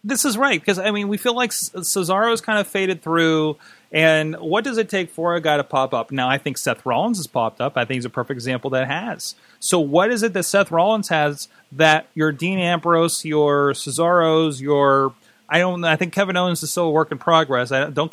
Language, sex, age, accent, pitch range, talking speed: English, male, 30-49, American, 140-190 Hz, 230 wpm